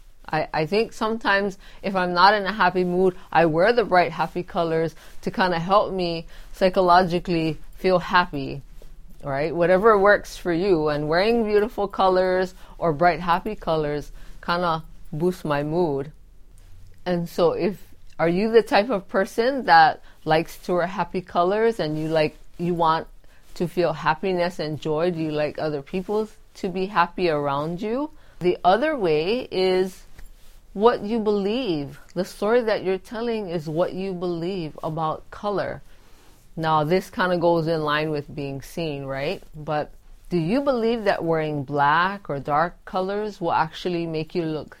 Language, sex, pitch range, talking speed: English, female, 155-190 Hz, 165 wpm